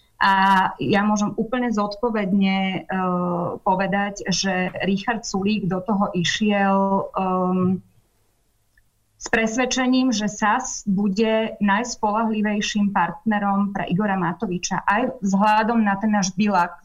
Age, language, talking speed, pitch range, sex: 30-49, Slovak, 105 wpm, 180-205 Hz, female